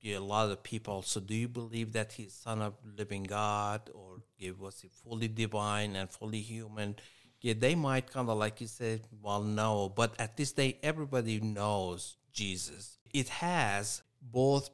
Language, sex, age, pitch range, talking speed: English, male, 50-69, 105-120 Hz, 175 wpm